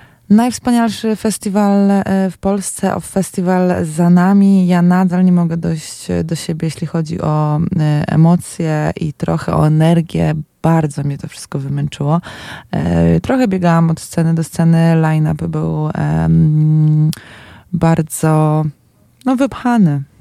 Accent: native